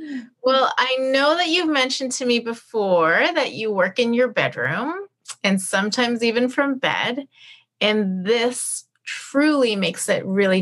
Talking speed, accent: 145 wpm, American